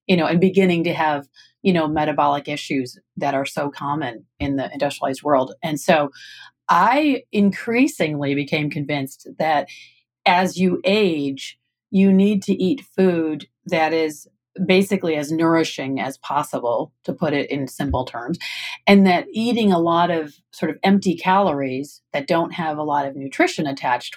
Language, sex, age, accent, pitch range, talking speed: English, female, 40-59, American, 145-185 Hz, 160 wpm